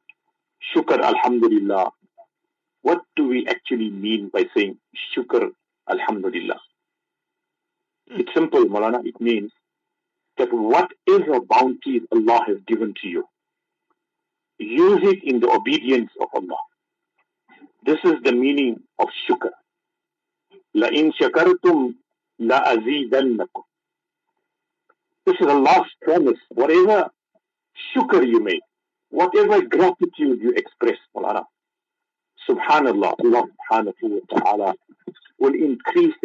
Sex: male